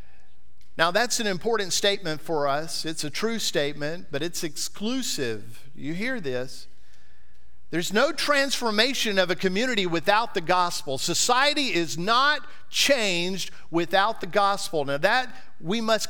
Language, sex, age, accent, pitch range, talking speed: English, male, 50-69, American, 160-235 Hz, 140 wpm